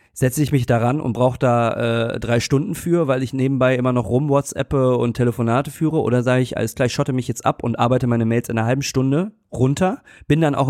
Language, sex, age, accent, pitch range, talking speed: German, male, 30-49, German, 115-135 Hz, 235 wpm